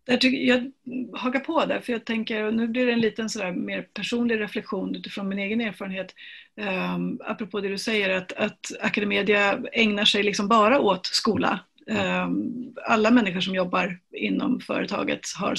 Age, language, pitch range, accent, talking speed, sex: 30-49, Swedish, 195-250 Hz, native, 170 wpm, female